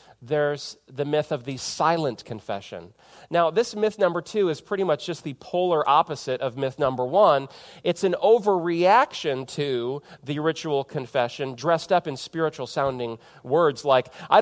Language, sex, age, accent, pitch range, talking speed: English, male, 40-59, American, 140-180 Hz, 155 wpm